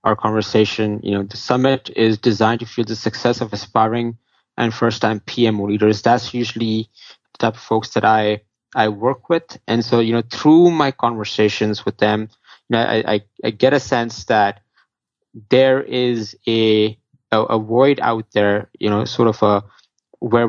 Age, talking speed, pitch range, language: 20-39, 180 wpm, 105-125 Hz, English